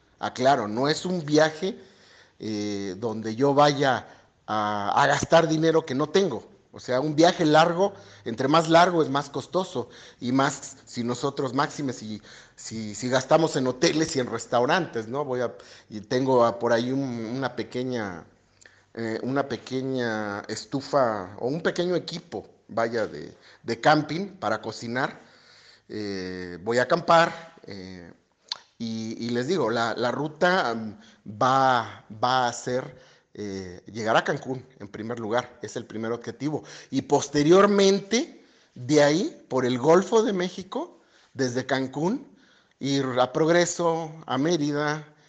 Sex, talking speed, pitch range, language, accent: male, 145 wpm, 115-150 Hz, Spanish, Mexican